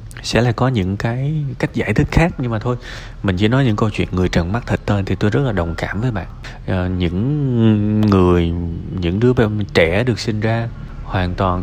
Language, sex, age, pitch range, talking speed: Vietnamese, male, 20-39, 95-120 Hz, 215 wpm